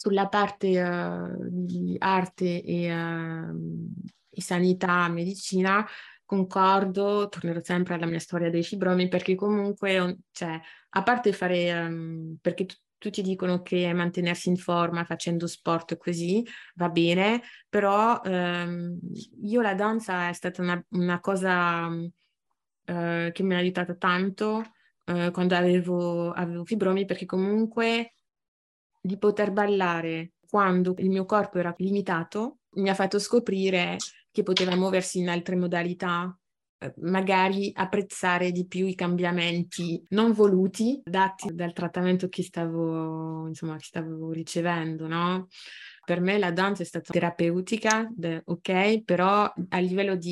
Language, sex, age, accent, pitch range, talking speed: Italian, female, 20-39, native, 170-195 Hz, 120 wpm